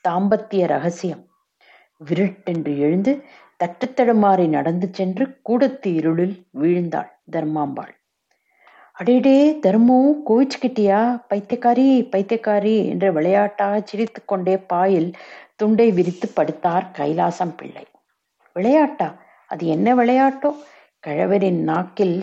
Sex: female